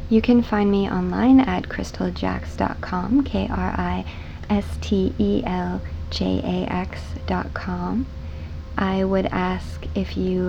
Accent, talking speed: American, 85 wpm